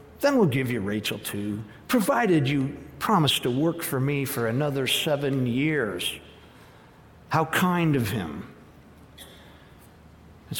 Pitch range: 120-150 Hz